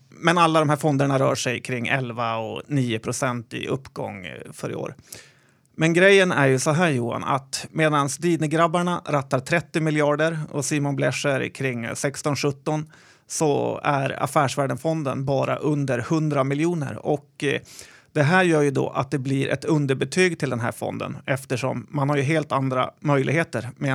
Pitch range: 130-160 Hz